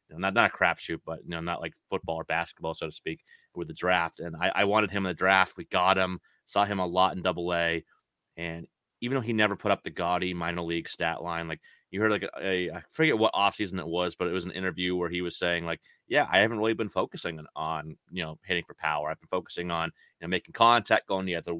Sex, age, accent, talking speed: male, 30-49, American, 265 wpm